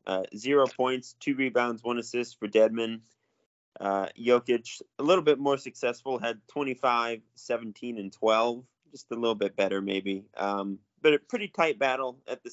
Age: 20-39